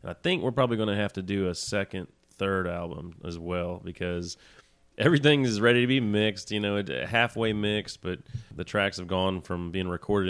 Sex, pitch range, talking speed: male, 90-105 Hz, 200 wpm